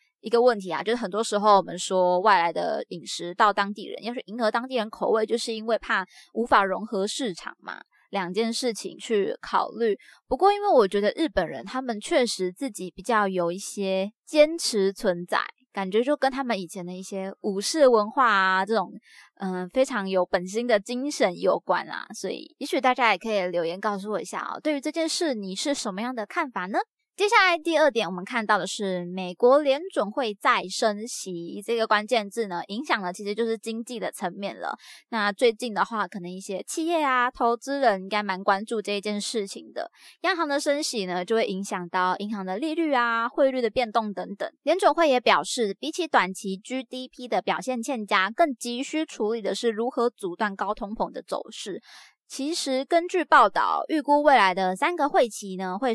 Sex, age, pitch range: female, 20-39, 195-270 Hz